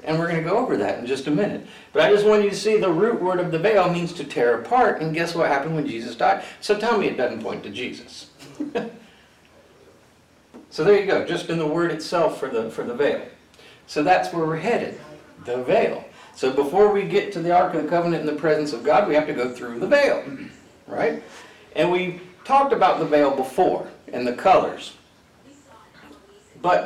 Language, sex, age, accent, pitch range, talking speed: English, male, 50-69, American, 150-210 Hz, 220 wpm